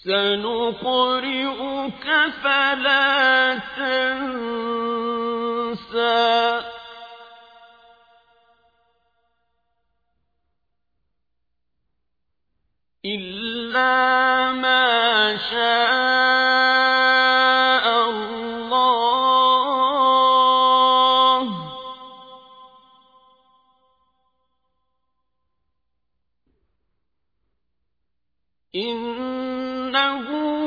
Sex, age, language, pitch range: male, 40-59, Arabic, 230-275 Hz